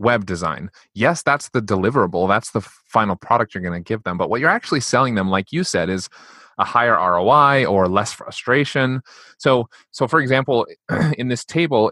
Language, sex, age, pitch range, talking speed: English, male, 30-49, 100-135 Hz, 190 wpm